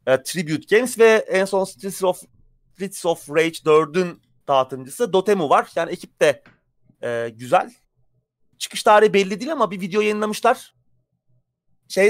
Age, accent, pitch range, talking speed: 30-49, native, 135-185 Hz, 125 wpm